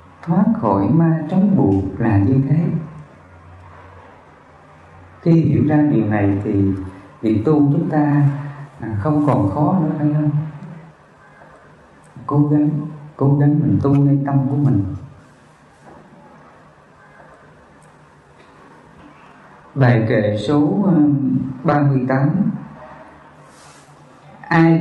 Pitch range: 120-170 Hz